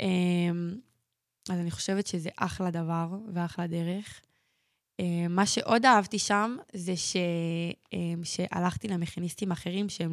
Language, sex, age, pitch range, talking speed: Hebrew, female, 10-29, 175-215 Hz, 125 wpm